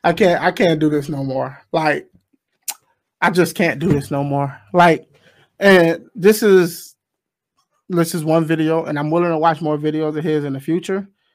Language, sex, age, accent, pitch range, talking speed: English, male, 30-49, American, 155-190 Hz, 190 wpm